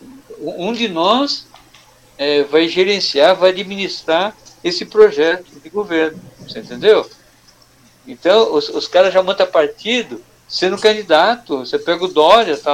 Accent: Brazilian